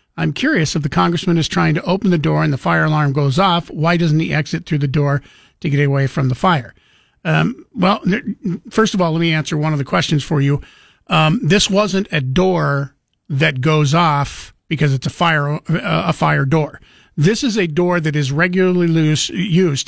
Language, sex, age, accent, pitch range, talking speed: English, male, 50-69, American, 145-180 Hz, 210 wpm